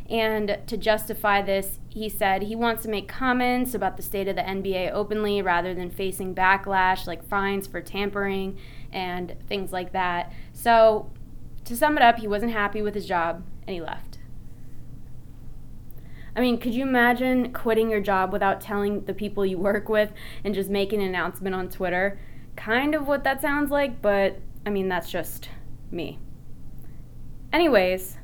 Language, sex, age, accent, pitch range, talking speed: English, female, 20-39, American, 190-220 Hz, 170 wpm